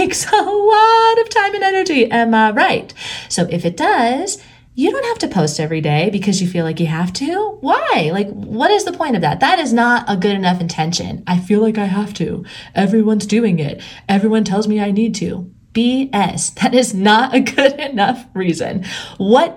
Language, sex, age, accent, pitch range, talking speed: English, female, 30-49, American, 195-305 Hz, 205 wpm